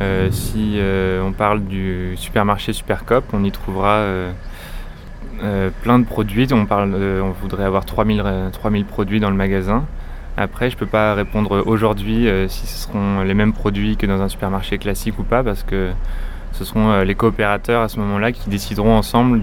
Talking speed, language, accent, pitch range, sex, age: 180 wpm, French, French, 95-110 Hz, male, 20-39